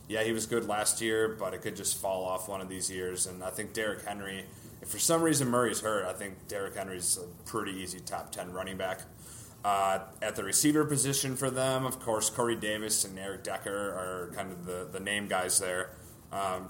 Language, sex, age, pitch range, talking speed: English, male, 30-49, 95-120 Hz, 220 wpm